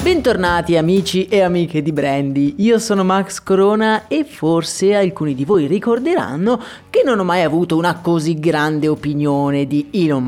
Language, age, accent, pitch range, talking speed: Italian, 30-49, native, 155-215 Hz, 160 wpm